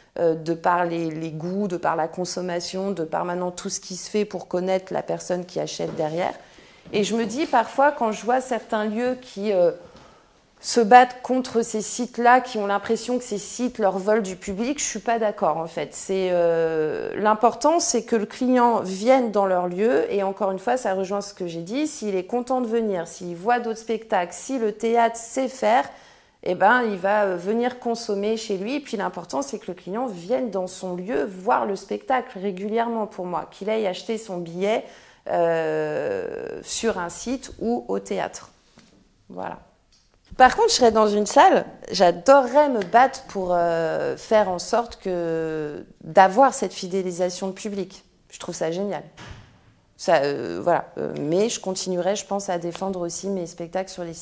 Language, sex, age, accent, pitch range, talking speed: French, female, 40-59, French, 180-235 Hz, 190 wpm